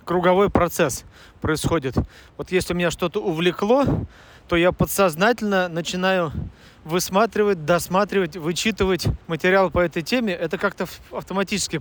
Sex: male